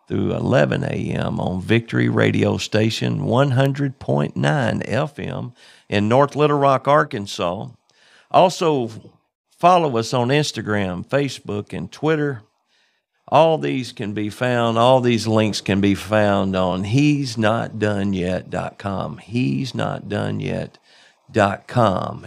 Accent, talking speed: American, 105 wpm